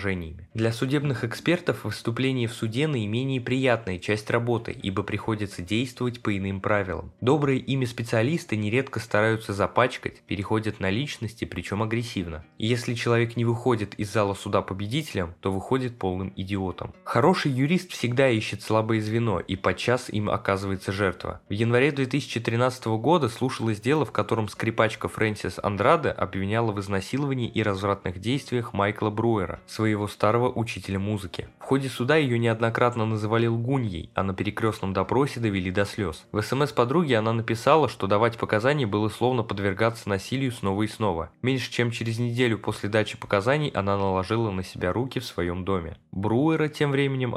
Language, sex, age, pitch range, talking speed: Russian, male, 20-39, 100-125 Hz, 155 wpm